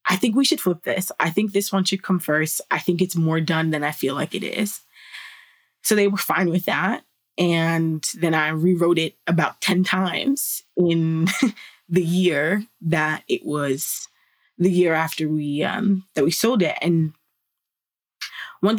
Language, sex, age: English, female, 20-39